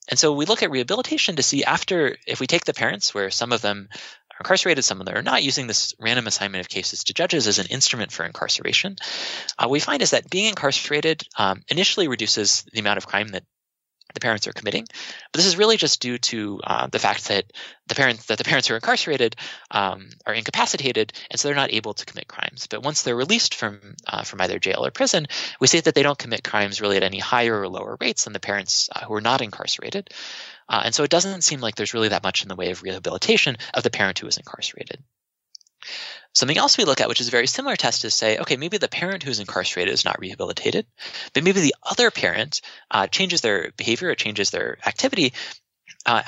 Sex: male